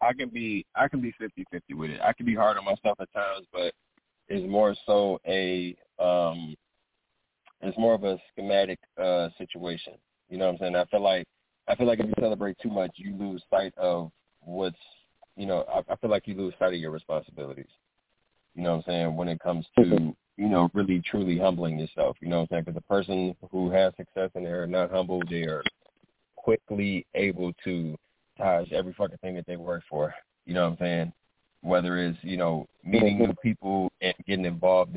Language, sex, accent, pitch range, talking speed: English, male, American, 85-100 Hz, 210 wpm